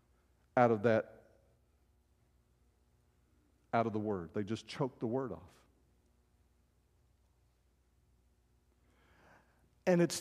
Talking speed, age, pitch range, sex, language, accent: 90 wpm, 50-69, 115-190 Hz, male, English, American